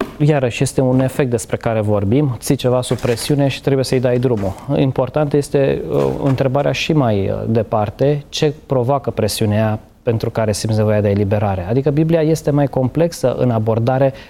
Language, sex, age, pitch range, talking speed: Romanian, male, 20-39, 115-135 Hz, 160 wpm